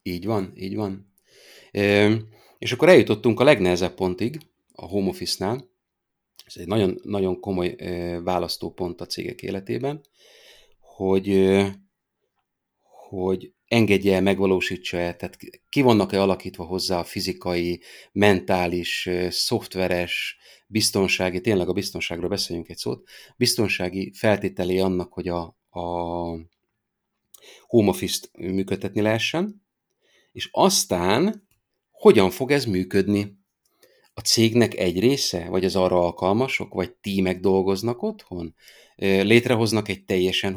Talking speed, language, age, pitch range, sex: 110 wpm, Hungarian, 30-49, 90-110 Hz, male